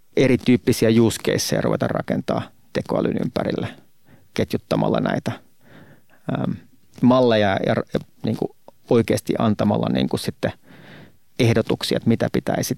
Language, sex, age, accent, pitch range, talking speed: Finnish, male, 30-49, native, 110-125 Hz, 100 wpm